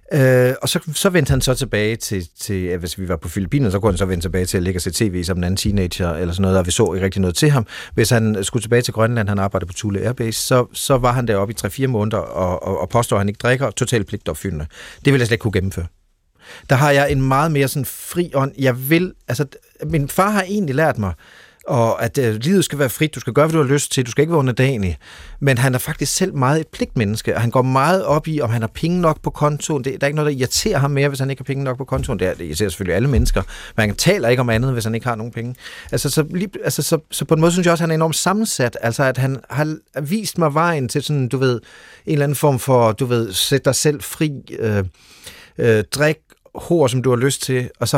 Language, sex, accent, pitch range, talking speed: Danish, male, native, 110-145 Hz, 275 wpm